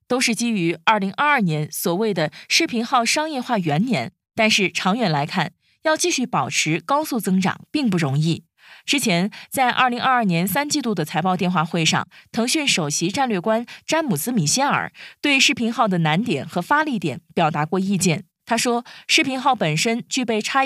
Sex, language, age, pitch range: female, Chinese, 20-39, 180-255 Hz